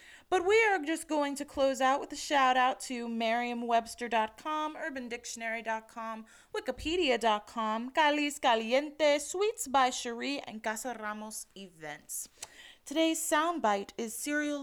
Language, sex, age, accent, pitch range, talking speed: English, female, 20-39, American, 225-320 Hz, 115 wpm